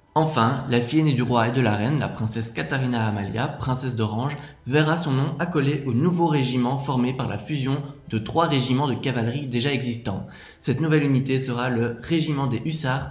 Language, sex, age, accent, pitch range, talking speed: French, male, 20-39, French, 120-145 Hz, 190 wpm